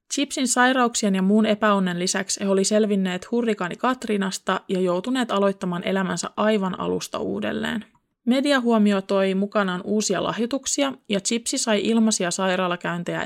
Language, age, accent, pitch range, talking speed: Finnish, 20-39, native, 190-230 Hz, 125 wpm